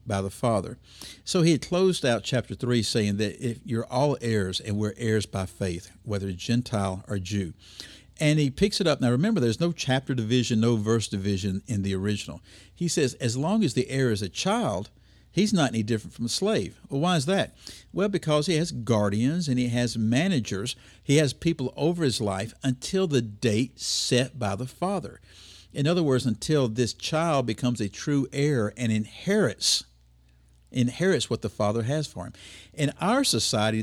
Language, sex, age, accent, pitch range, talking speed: English, male, 60-79, American, 105-145 Hz, 190 wpm